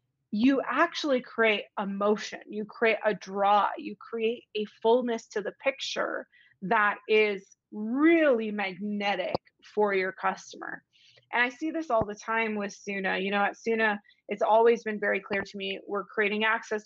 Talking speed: 165 wpm